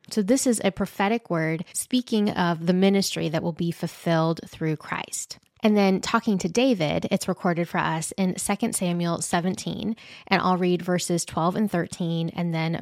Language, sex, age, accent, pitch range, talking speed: English, female, 20-39, American, 170-210 Hz, 180 wpm